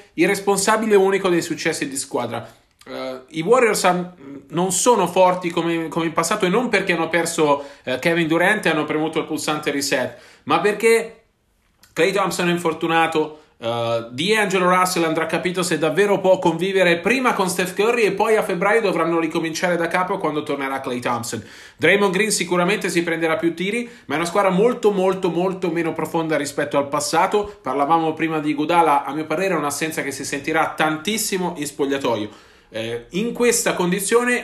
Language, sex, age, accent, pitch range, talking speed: Italian, male, 40-59, native, 155-200 Hz, 170 wpm